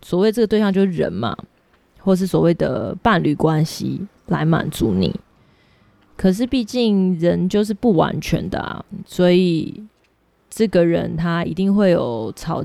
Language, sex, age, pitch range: Chinese, female, 20-39, 170-200 Hz